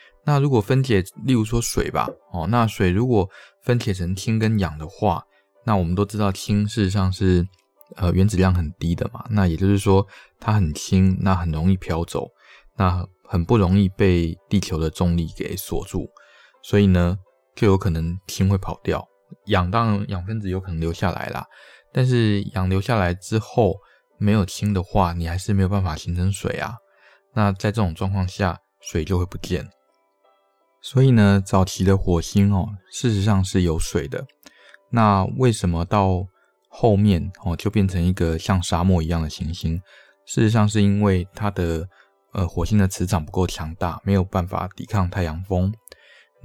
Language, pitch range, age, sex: Chinese, 90-105 Hz, 20-39, male